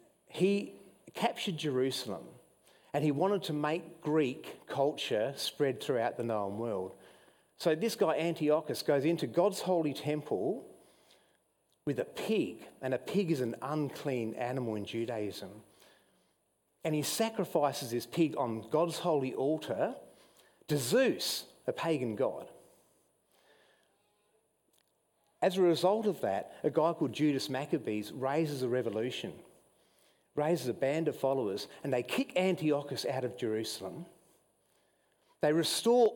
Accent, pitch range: Australian, 125-175 Hz